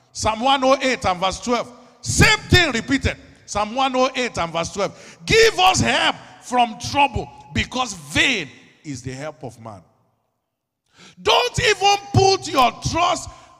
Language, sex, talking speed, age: English, male, 130 wpm, 50-69